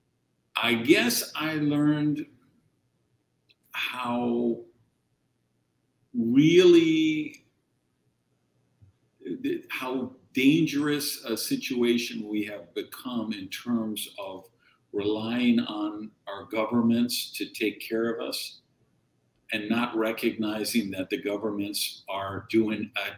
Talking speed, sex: 90 wpm, male